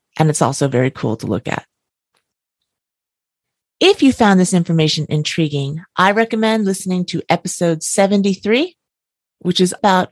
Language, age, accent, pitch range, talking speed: English, 40-59, American, 155-200 Hz, 135 wpm